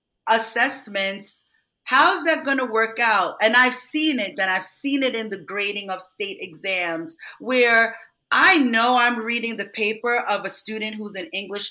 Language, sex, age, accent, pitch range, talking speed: English, female, 30-49, American, 210-260 Hz, 175 wpm